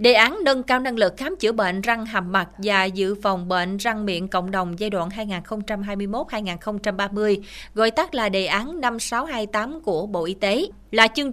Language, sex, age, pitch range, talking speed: Vietnamese, female, 20-39, 190-245 Hz, 185 wpm